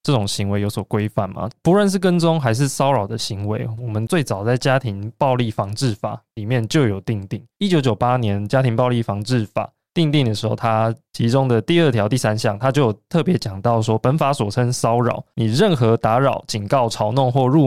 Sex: male